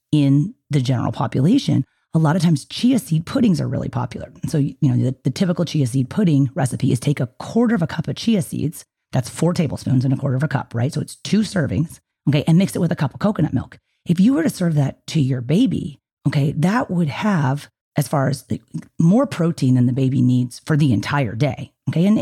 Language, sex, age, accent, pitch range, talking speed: English, female, 30-49, American, 130-170 Hz, 230 wpm